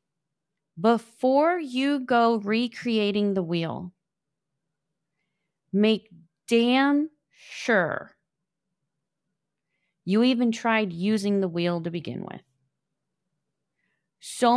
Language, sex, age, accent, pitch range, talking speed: English, female, 30-49, American, 190-240 Hz, 80 wpm